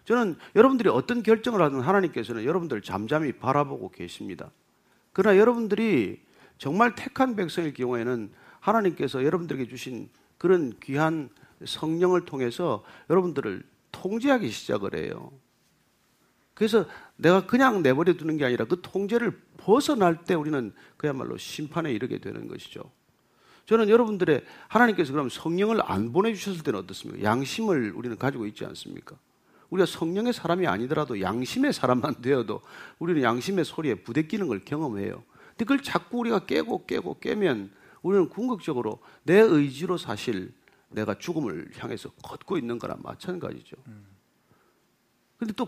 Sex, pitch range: male, 140-225 Hz